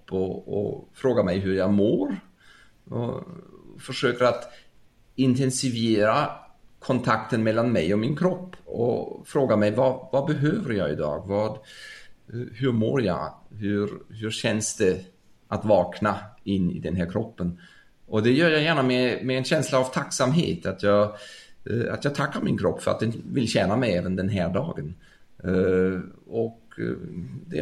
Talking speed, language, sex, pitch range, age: 150 wpm, English, male, 100-135 Hz, 30-49